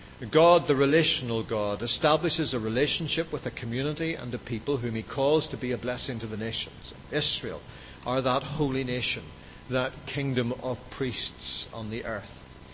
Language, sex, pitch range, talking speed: English, male, 115-145 Hz, 165 wpm